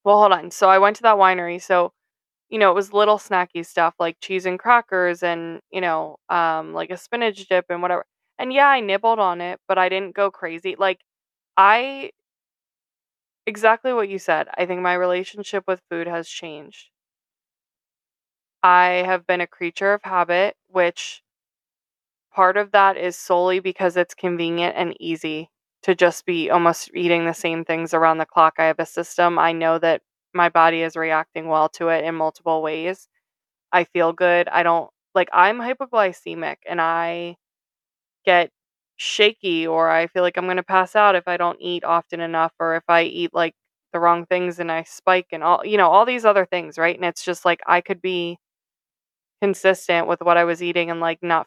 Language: English